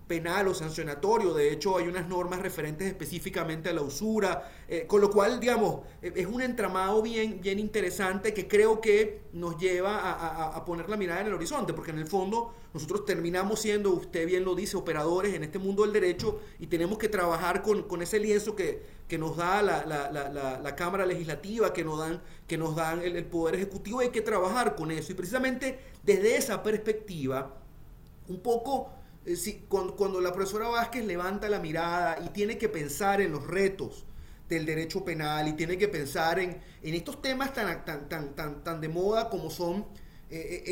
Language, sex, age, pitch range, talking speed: Spanish, male, 30-49, 165-210 Hz, 195 wpm